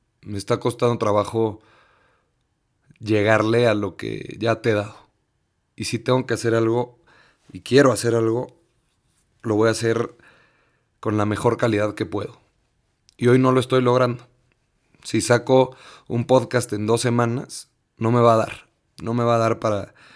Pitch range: 105-125 Hz